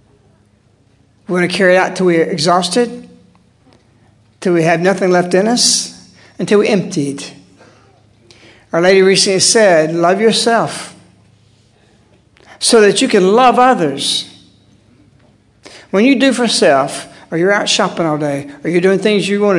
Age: 60-79